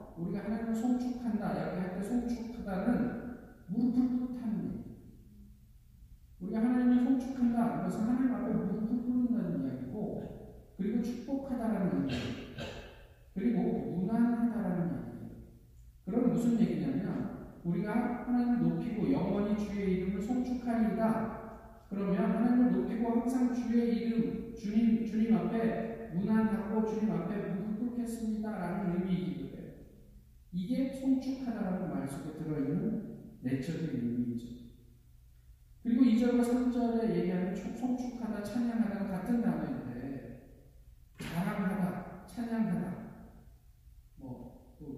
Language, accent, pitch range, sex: Korean, native, 185-235 Hz, male